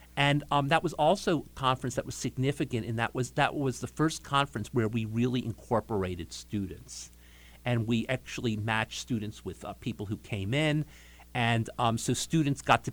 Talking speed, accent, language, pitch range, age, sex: 185 wpm, American, English, 100-130 Hz, 50-69, male